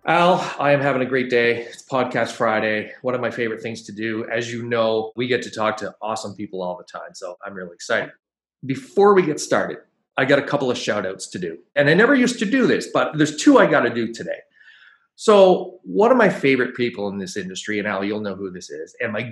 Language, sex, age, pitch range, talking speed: English, male, 30-49, 110-145 Hz, 250 wpm